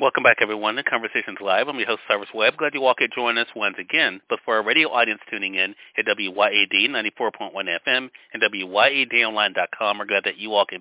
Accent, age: American, 40-59